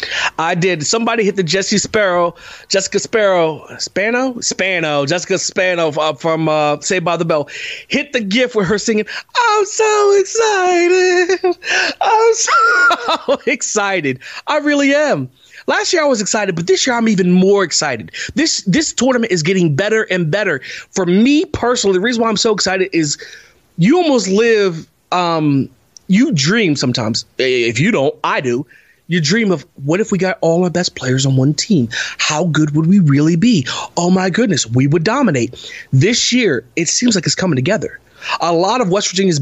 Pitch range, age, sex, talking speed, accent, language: 170-245 Hz, 30-49, male, 175 wpm, American, English